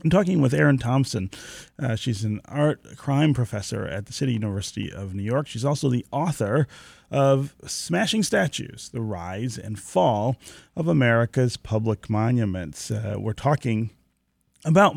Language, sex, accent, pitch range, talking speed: English, male, American, 100-135 Hz, 150 wpm